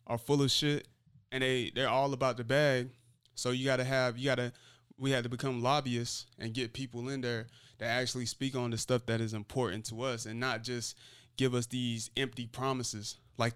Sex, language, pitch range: male, English, 115-125 Hz